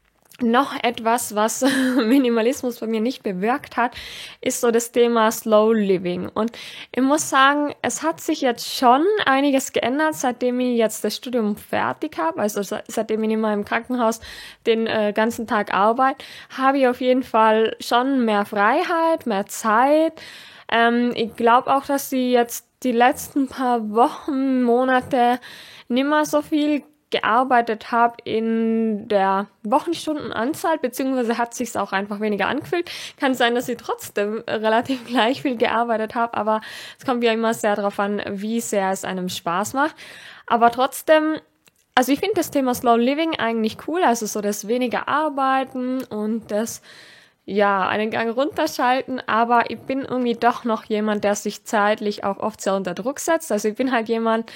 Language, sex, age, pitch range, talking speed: German, female, 10-29, 220-265 Hz, 165 wpm